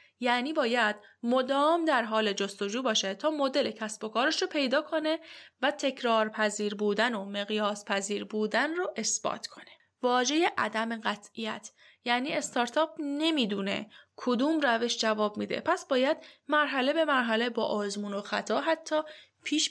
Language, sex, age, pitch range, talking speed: Persian, female, 10-29, 215-280 Hz, 145 wpm